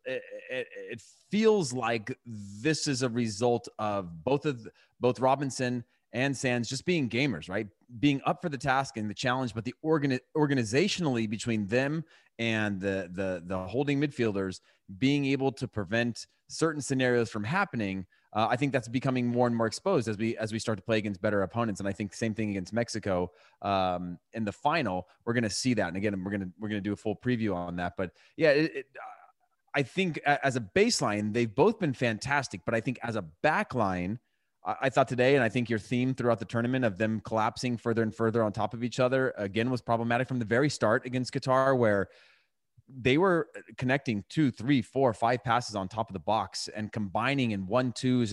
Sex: male